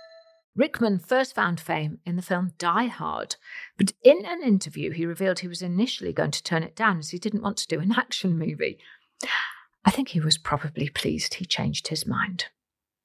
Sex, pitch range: female, 165-220 Hz